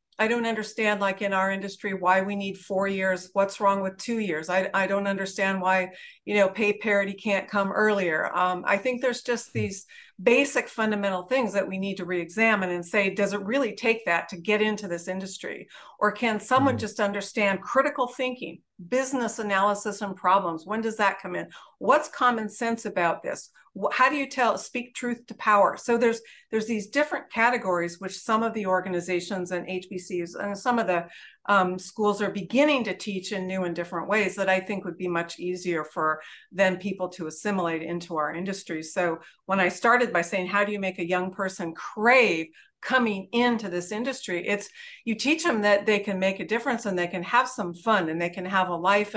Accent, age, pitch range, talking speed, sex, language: American, 50-69, 185-220 Hz, 205 wpm, female, English